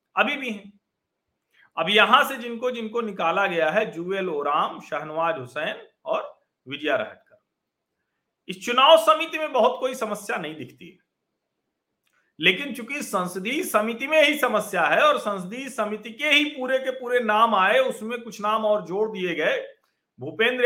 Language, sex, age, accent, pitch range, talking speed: Hindi, male, 50-69, native, 170-235 Hz, 140 wpm